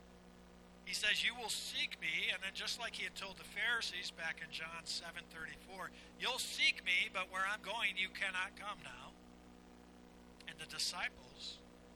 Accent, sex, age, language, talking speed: American, male, 60-79, English, 170 wpm